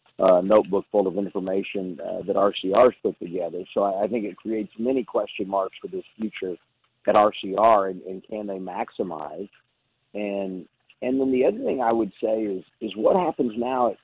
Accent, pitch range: American, 100-115 Hz